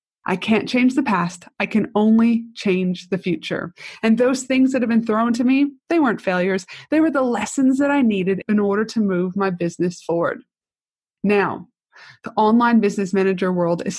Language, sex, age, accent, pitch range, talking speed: English, female, 30-49, American, 195-245 Hz, 190 wpm